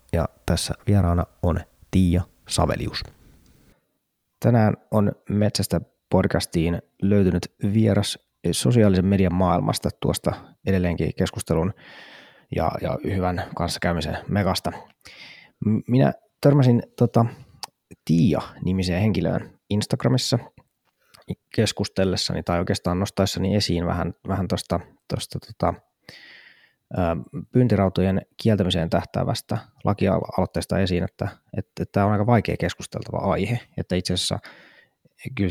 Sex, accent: male, native